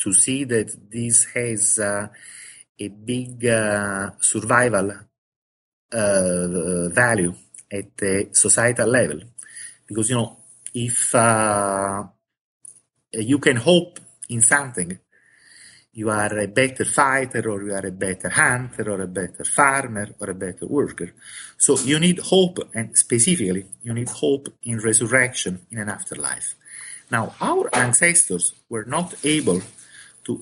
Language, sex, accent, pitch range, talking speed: English, male, Italian, 105-130 Hz, 130 wpm